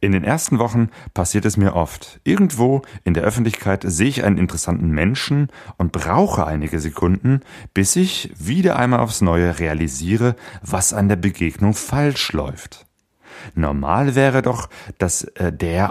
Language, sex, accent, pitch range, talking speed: German, male, German, 85-120 Hz, 150 wpm